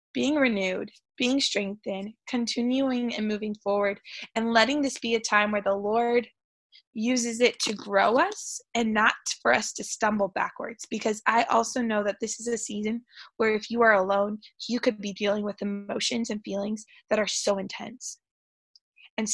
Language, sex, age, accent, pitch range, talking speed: English, female, 20-39, American, 210-255 Hz, 175 wpm